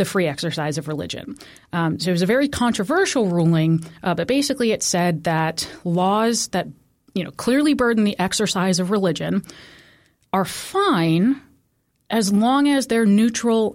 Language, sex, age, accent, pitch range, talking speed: English, female, 30-49, American, 175-230 Hz, 155 wpm